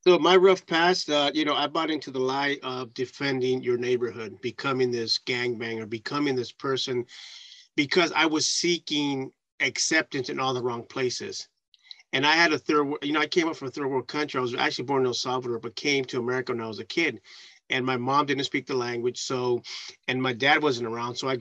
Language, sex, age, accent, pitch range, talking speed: English, male, 30-49, American, 125-150 Hz, 220 wpm